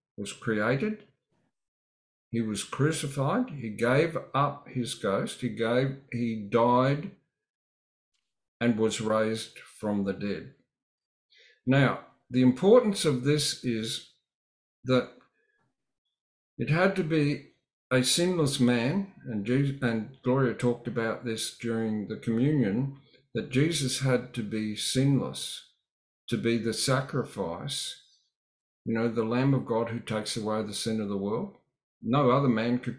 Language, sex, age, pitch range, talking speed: English, male, 50-69, 110-140 Hz, 130 wpm